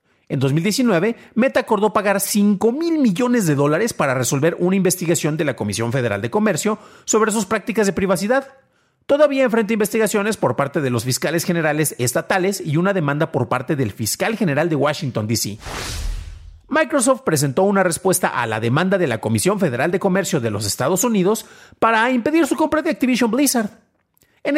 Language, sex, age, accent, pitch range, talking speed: Spanish, male, 40-59, Mexican, 145-220 Hz, 175 wpm